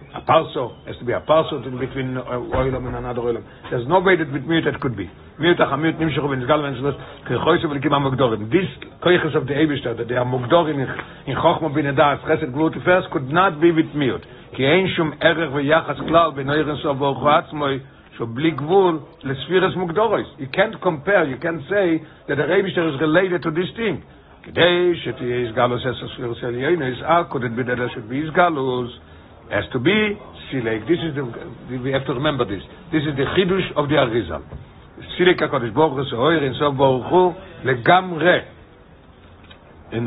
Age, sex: 60-79, male